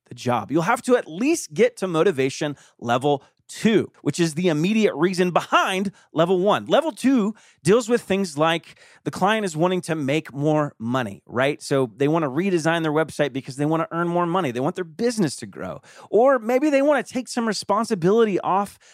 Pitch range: 150-215 Hz